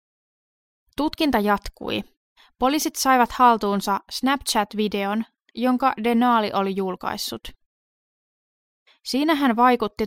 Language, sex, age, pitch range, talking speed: Finnish, female, 20-39, 195-255 Hz, 75 wpm